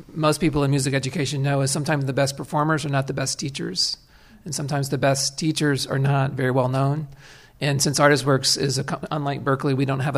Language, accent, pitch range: English, American, 135-150 Hz